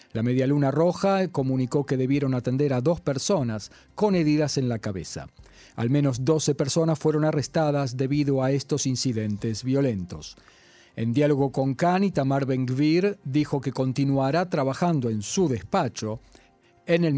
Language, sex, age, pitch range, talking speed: Spanish, male, 40-59, 130-160 Hz, 145 wpm